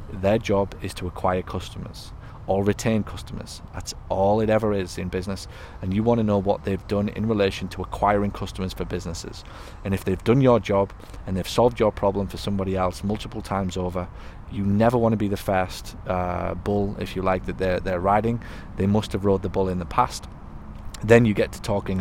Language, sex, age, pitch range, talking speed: English, male, 30-49, 90-105 Hz, 215 wpm